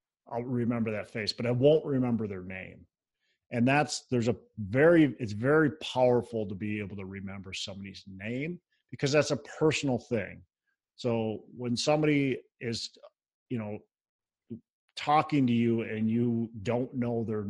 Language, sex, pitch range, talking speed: English, male, 105-125 Hz, 150 wpm